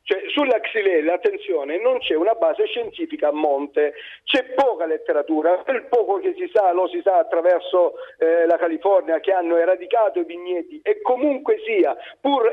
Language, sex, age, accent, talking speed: Italian, male, 50-69, native, 170 wpm